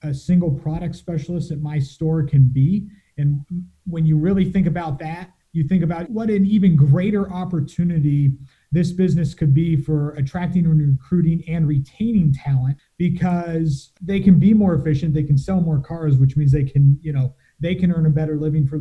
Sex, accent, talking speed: male, American, 190 wpm